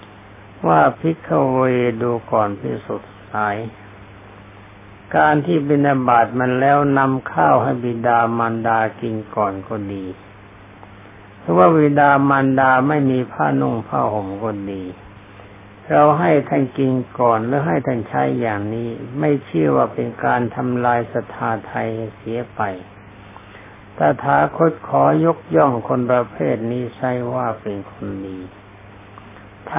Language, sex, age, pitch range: Thai, male, 60-79, 100-130 Hz